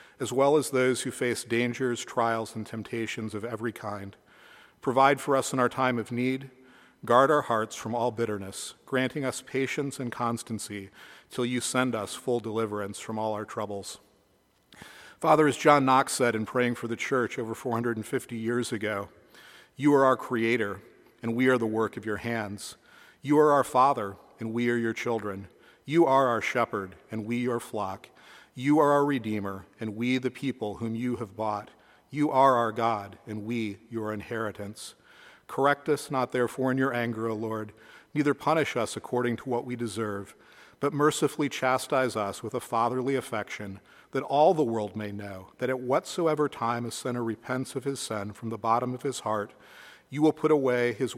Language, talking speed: English, 185 wpm